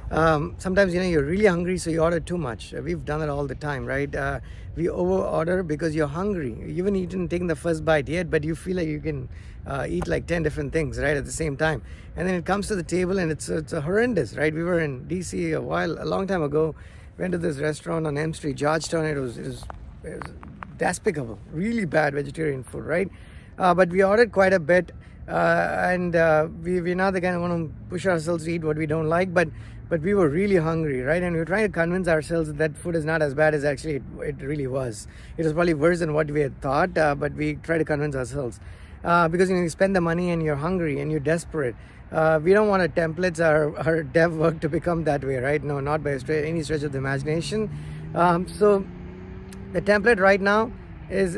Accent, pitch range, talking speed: Indian, 150-180 Hz, 245 wpm